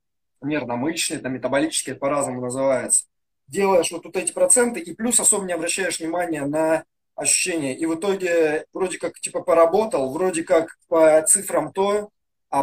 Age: 20-39